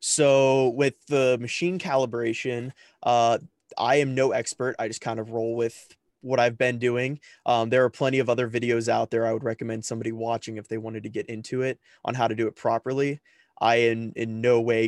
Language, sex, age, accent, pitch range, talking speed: English, male, 20-39, American, 115-125 Hz, 210 wpm